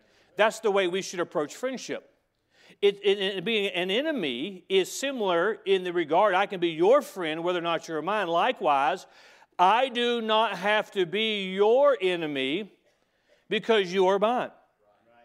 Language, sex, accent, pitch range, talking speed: English, male, American, 180-235 Hz, 150 wpm